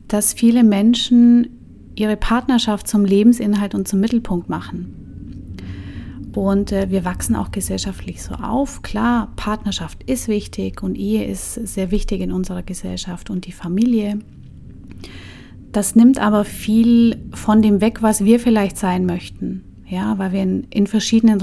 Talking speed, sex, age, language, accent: 135 wpm, female, 30-49, German, German